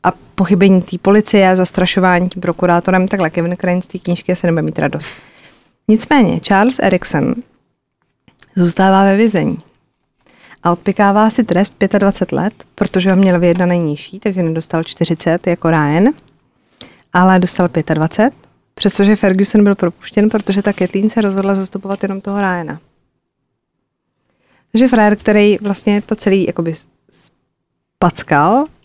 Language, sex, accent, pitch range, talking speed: Czech, female, native, 175-210 Hz, 130 wpm